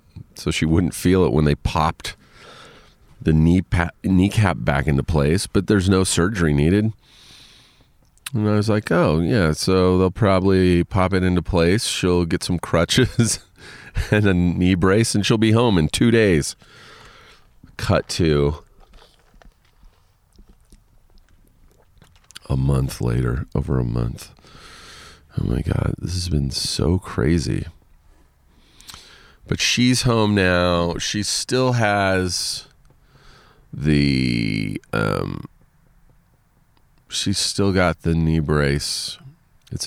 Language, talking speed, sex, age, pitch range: English, 120 wpm, male, 40-59, 75-100 Hz